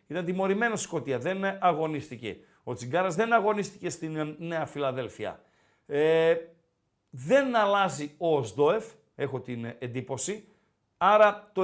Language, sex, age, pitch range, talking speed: Greek, male, 50-69, 150-215 Hz, 115 wpm